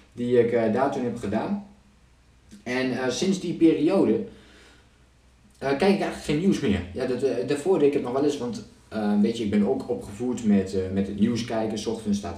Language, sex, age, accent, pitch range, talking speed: Dutch, male, 20-39, Dutch, 100-130 Hz, 215 wpm